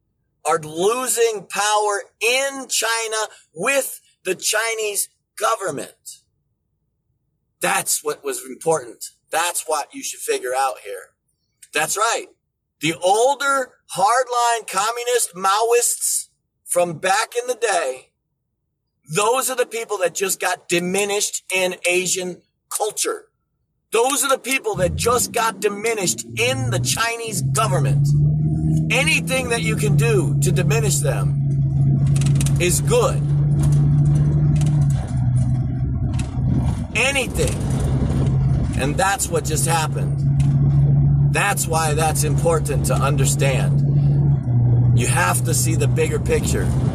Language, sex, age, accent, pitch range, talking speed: English, male, 40-59, American, 140-210 Hz, 105 wpm